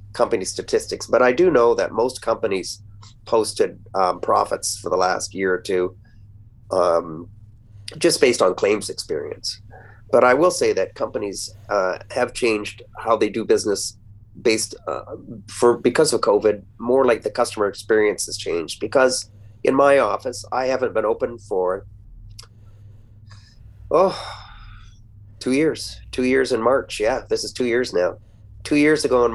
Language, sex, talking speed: English, male, 155 wpm